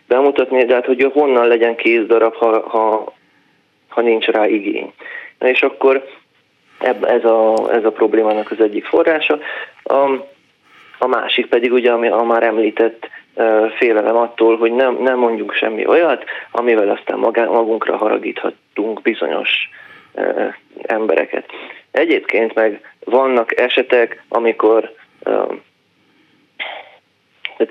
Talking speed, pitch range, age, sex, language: 120 wpm, 115-165 Hz, 30-49, male, Hungarian